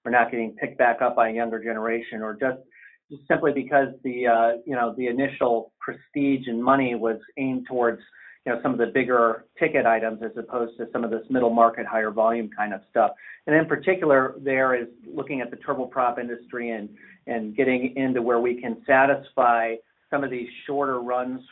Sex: male